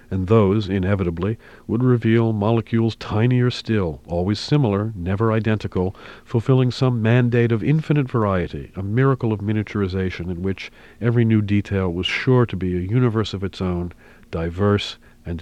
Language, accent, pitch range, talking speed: English, American, 85-105 Hz, 150 wpm